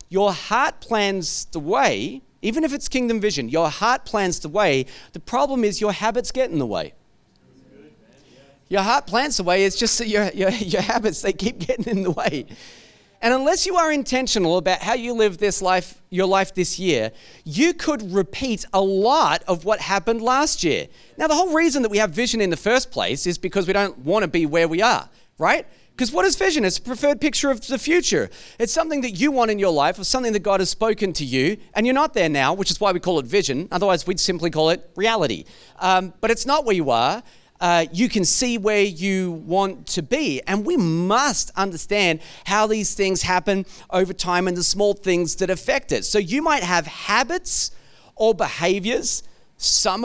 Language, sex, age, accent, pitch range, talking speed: English, male, 40-59, Australian, 185-250 Hz, 210 wpm